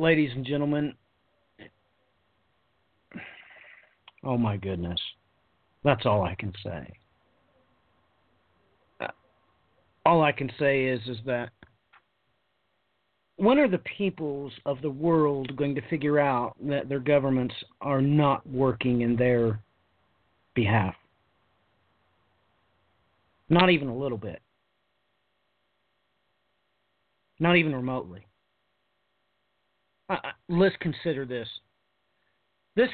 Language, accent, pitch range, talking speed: English, American, 105-160 Hz, 95 wpm